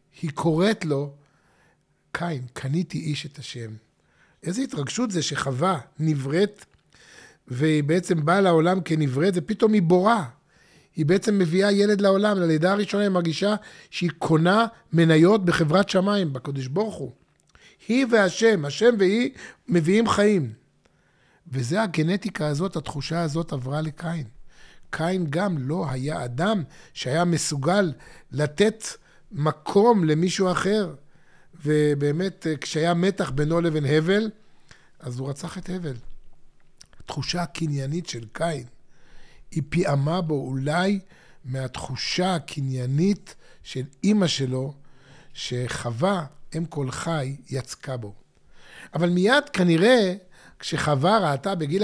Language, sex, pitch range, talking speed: Hebrew, male, 145-190 Hz, 110 wpm